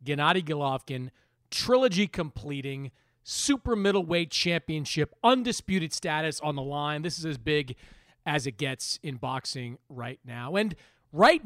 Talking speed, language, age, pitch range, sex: 125 wpm, English, 40-59, 130-185 Hz, male